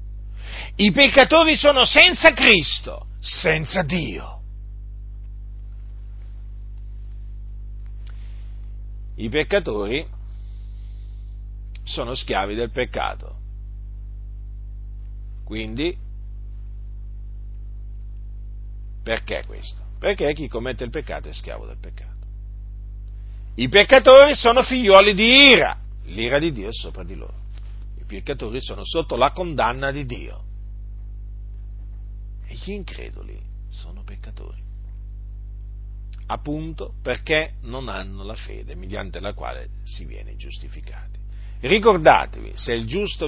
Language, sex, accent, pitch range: Italian, male, native, 100-130 Hz